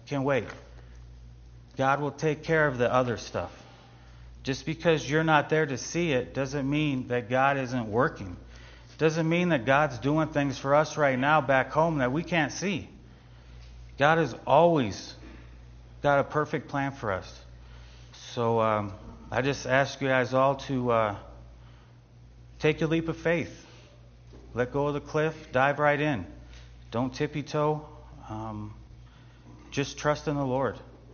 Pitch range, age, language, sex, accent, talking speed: 100-140 Hz, 40-59, English, male, American, 160 wpm